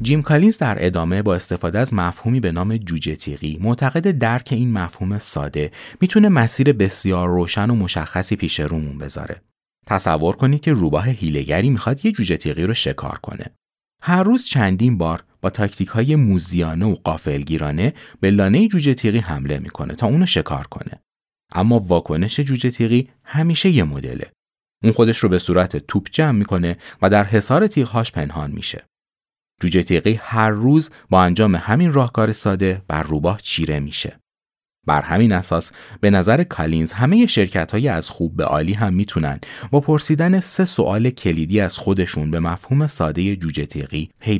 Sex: male